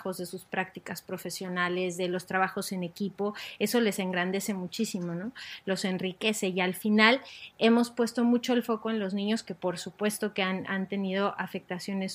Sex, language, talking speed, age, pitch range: female, Spanish, 175 wpm, 30-49, 190-220 Hz